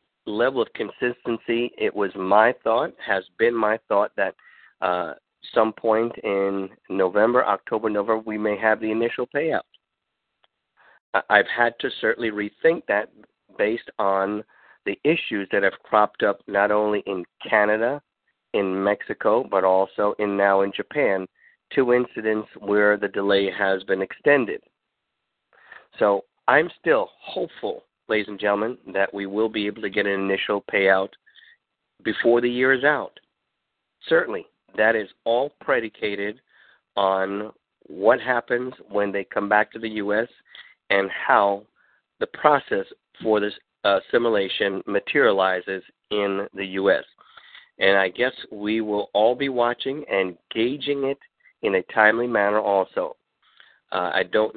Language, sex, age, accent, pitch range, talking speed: English, male, 50-69, American, 100-115 Hz, 140 wpm